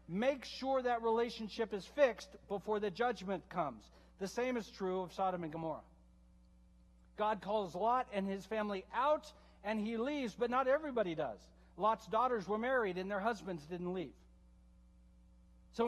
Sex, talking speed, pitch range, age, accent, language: male, 160 wpm, 175-235 Hz, 60-79, American, English